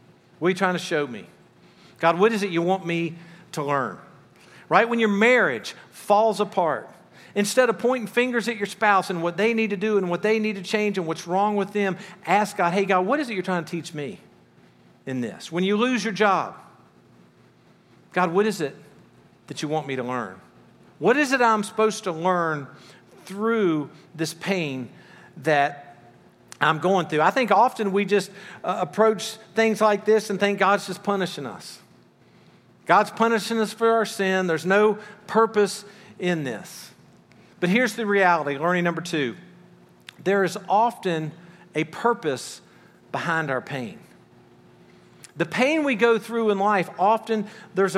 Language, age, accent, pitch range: English, 50-69, American, 165-215 Hz